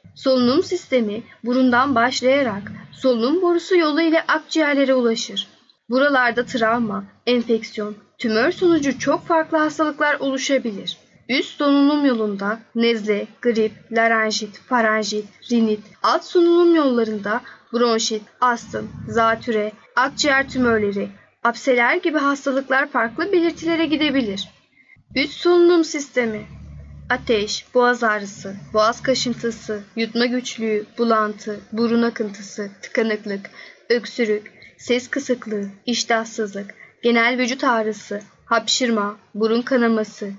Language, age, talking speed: Turkish, 10-29, 95 wpm